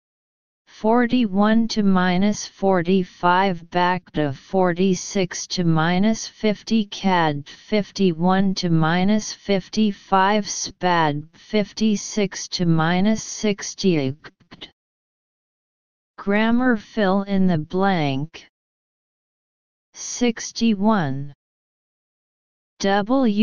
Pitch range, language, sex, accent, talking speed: 175-215 Hz, English, female, American, 80 wpm